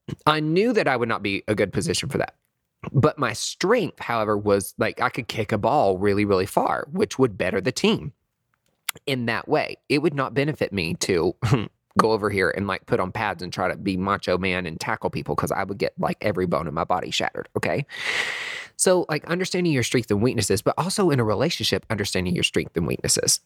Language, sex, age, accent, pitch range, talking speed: English, male, 20-39, American, 105-135 Hz, 220 wpm